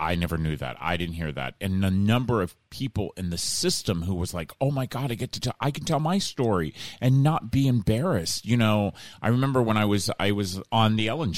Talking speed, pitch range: 250 wpm, 95-120 Hz